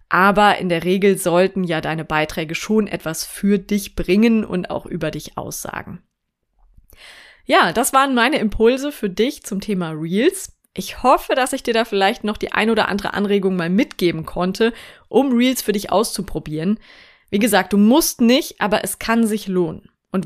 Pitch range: 180-230 Hz